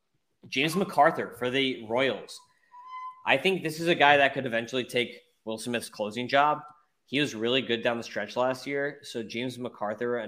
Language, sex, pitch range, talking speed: English, male, 110-135 Hz, 185 wpm